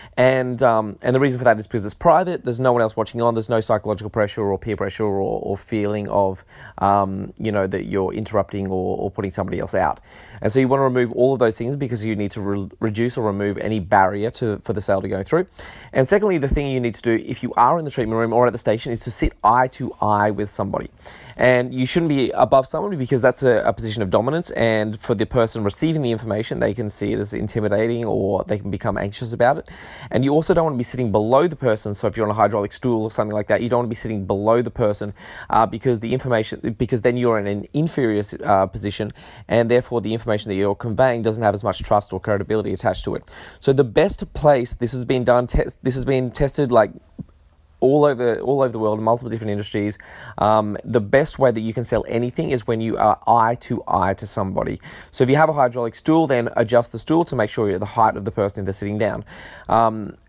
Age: 20-39